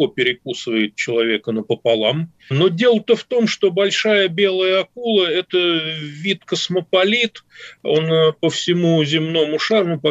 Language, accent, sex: Russian, native, male